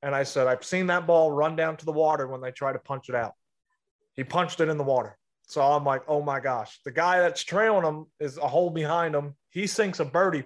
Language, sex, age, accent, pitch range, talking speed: English, male, 20-39, American, 140-165 Hz, 260 wpm